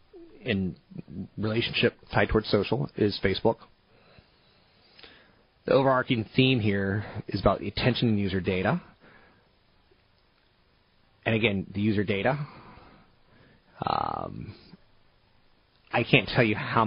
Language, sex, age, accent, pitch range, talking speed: English, male, 30-49, American, 95-115 Hz, 105 wpm